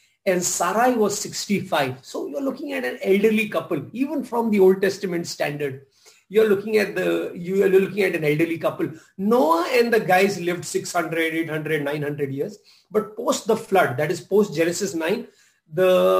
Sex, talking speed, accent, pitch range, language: male, 180 wpm, Indian, 150-200 Hz, English